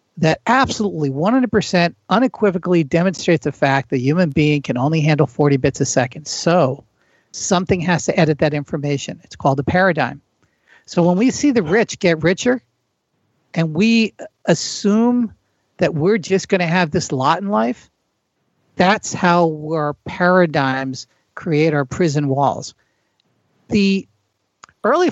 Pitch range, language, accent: 145-190 Hz, English, American